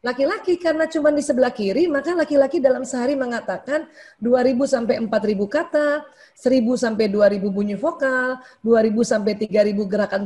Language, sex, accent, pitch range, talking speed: Indonesian, female, native, 210-290 Hz, 140 wpm